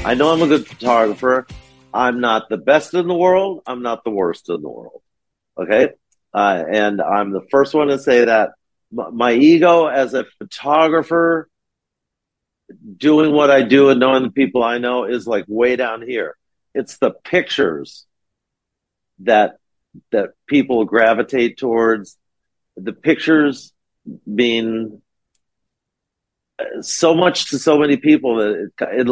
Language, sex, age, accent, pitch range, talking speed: English, male, 50-69, American, 115-155 Hz, 145 wpm